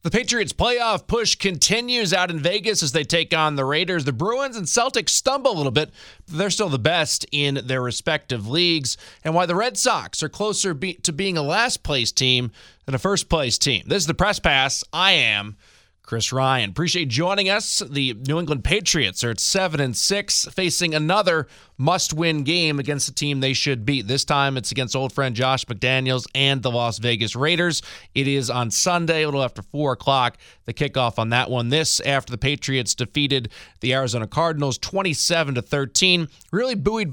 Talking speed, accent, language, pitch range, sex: 195 wpm, American, English, 120-170 Hz, male